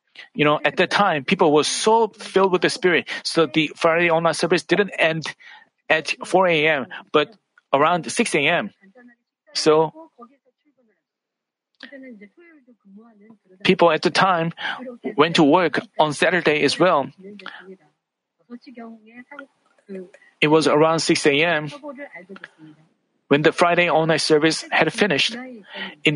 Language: Korean